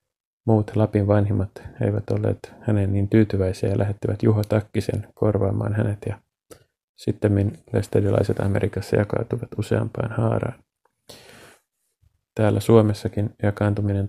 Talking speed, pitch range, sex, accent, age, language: 100 wpm, 100-110 Hz, male, native, 30-49, Finnish